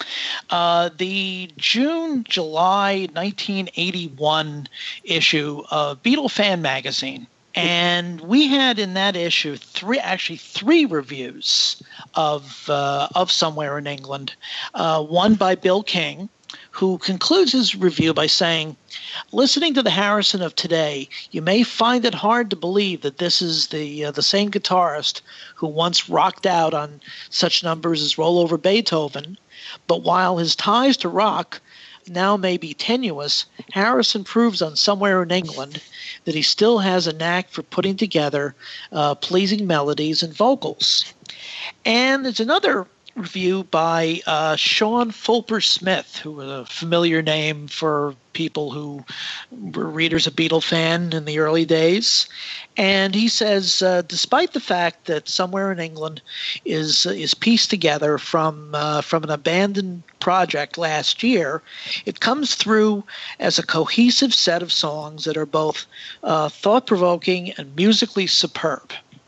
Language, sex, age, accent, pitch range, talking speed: English, male, 50-69, American, 155-205 Hz, 140 wpm